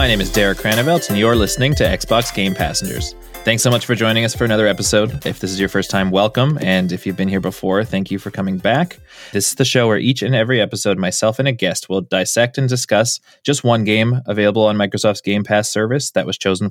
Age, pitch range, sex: 20-39, 95-115 Hz, male